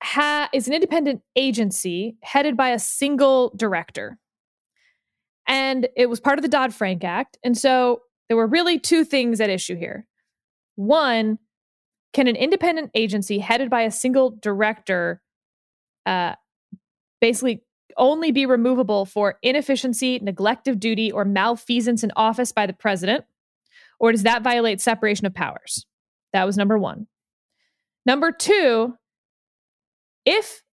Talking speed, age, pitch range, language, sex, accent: 135 wpm, 20-39, 205-265 Hz, English, female, American